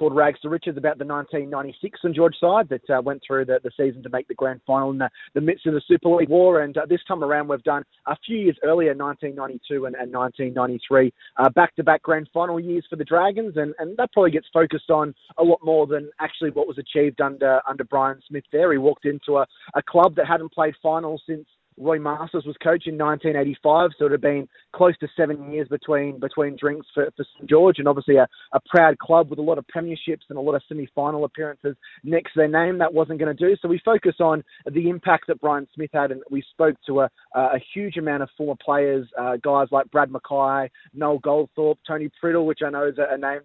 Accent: Australian